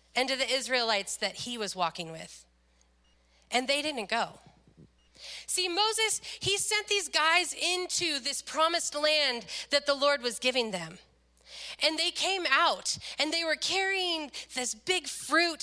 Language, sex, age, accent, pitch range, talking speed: English, female, 30-49, American, 230-320 Hz, 155 wpm